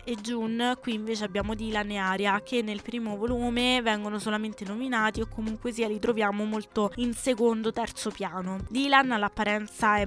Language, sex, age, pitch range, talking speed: Italian, female, 20-39, 190-220 Hz, 160 wpm